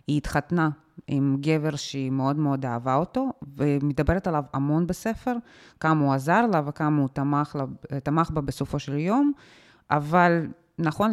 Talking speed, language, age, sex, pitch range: 140 wpm, Hebrew, 20-39, female, 150-205 Hz